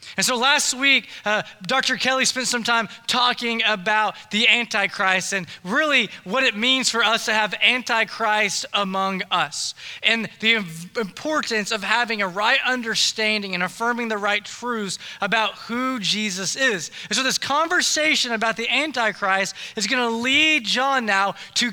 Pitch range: 190-245 Hz